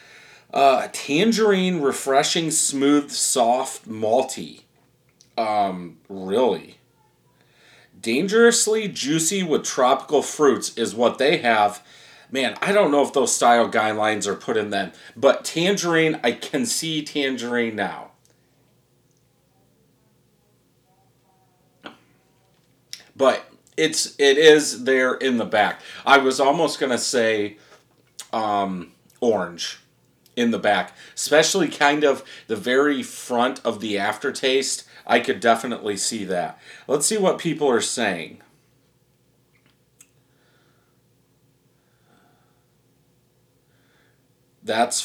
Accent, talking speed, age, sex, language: American, 100 wpm, 40-59, male, English